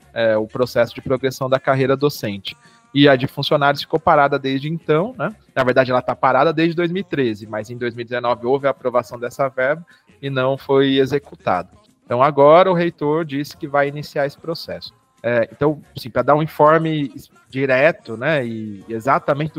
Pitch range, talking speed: 120-155 Hz, 175 wpm